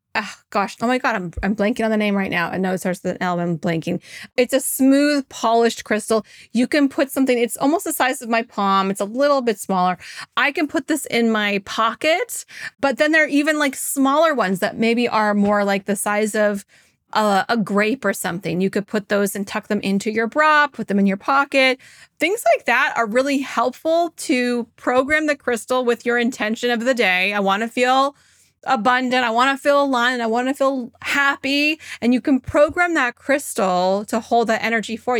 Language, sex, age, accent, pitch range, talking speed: English, female, 30-49, American, 205-270 Hz, 215 wpm